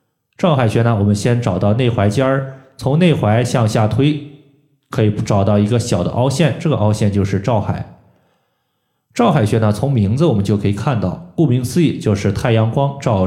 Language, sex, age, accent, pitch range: Chinese, male, 20-39, native, 105-135 Hz